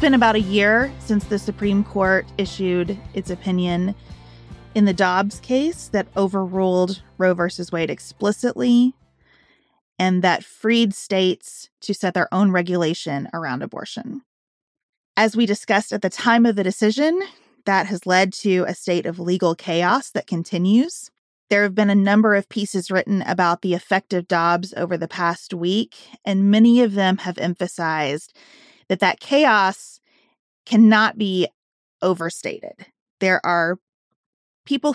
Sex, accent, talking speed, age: female, American, 145 wpm, 30-49